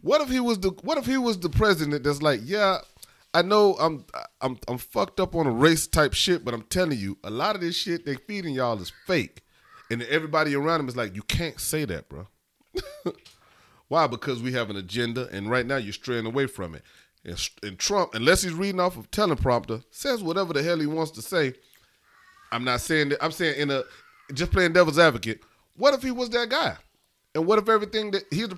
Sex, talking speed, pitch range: male, 225 wpm, 125-195 Hz